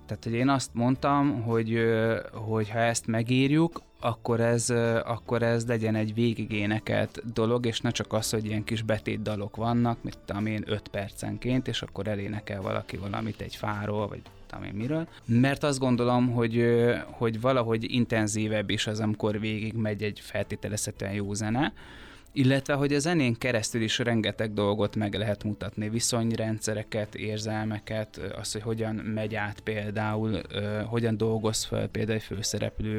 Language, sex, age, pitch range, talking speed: Hungarian, male, 20-39, 105-120 Hz, 150 wpm